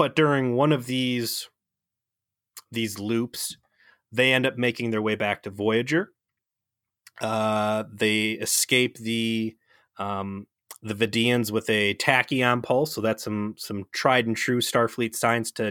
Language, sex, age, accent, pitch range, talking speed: English, male, 30-49, American, 110-130 Hz, 140 wpm